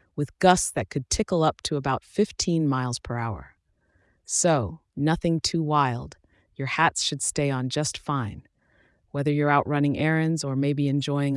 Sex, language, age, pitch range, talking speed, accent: female, English, 30-49, 135-165 Hz, 165 wpm, American